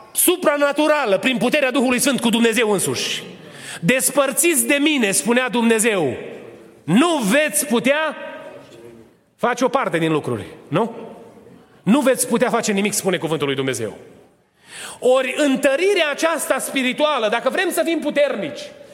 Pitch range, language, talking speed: 205-285 Hz, Romanian, 125 wpm